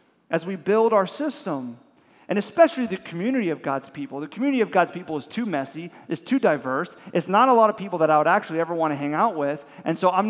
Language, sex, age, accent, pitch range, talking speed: English, male, 40-59, American, 145-195 Hz, 245 wpm